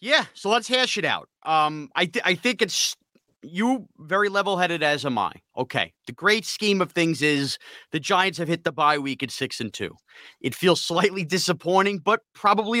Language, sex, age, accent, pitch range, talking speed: English, male, 30-49, American, 155-210 Hz, 200 wpm